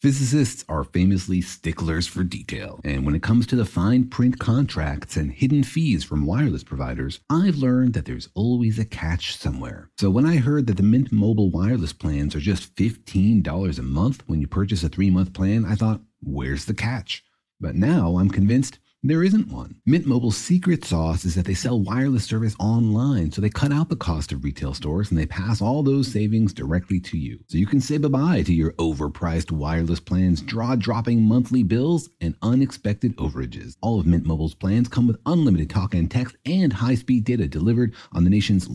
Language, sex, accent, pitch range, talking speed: English, male, American, 85-125 Hz, 195 wpm